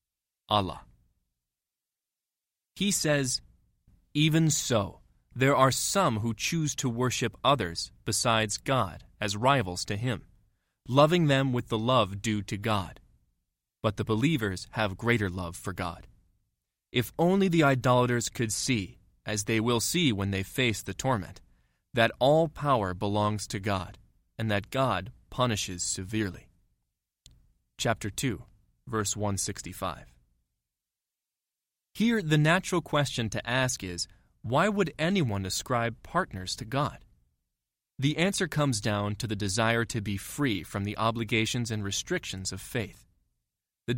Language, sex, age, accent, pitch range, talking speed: English, male, 20-39, American, 100-135 Hz, 130 wpm